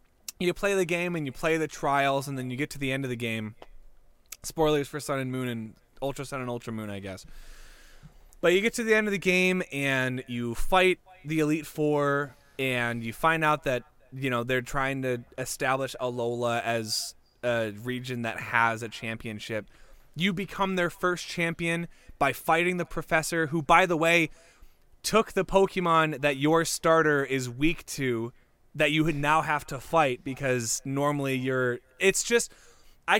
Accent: American